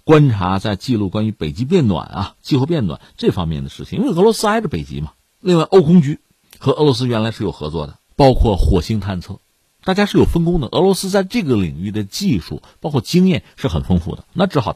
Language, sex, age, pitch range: Chinese, male, 50-69, 90-145 Hz